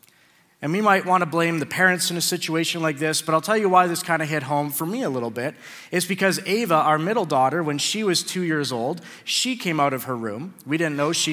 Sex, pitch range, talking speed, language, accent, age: male, 145-180 Hz, 265 wpm, English, American, 30-49